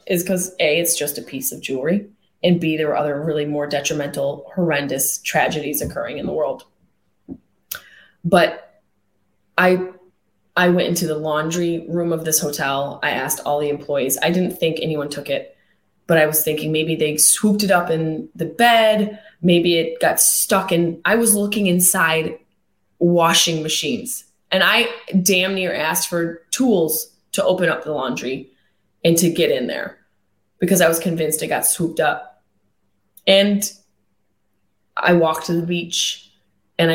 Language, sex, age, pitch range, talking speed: English, female, 20-39, 150-190 Hz, 160 wpm